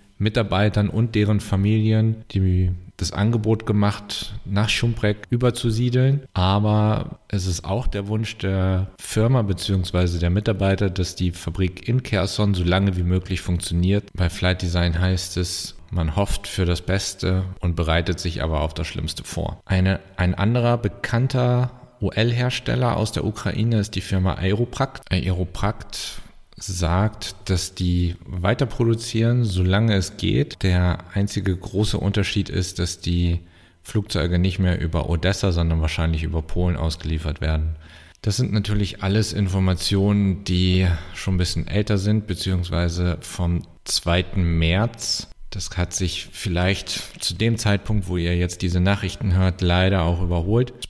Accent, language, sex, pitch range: German, German, male, 85-105 Hz